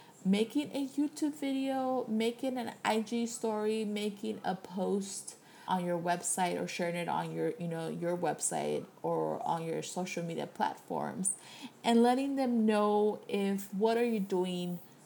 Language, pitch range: English, 175-225 Hz